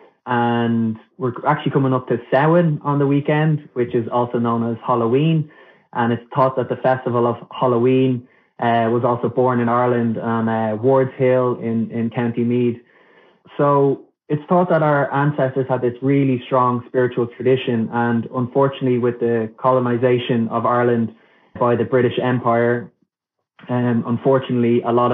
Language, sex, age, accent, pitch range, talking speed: English, male, 20-39, Irish, 115-130 Hz, 155 wpm